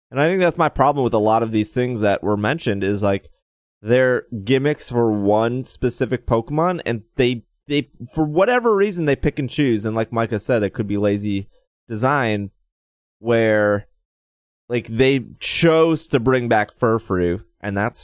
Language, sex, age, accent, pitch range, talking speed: English, male, 20-39, American, 100-130 Hz, 175 wpm